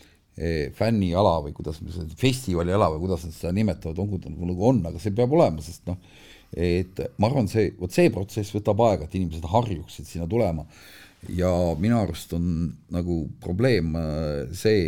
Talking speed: 160 wpm